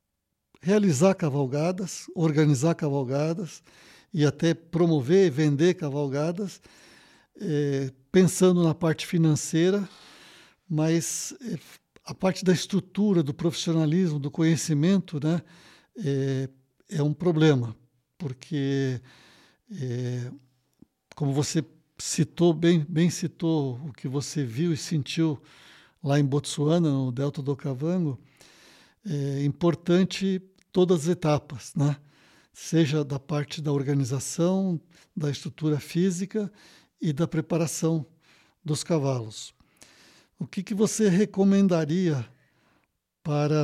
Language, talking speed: Portuguese, 100 wpm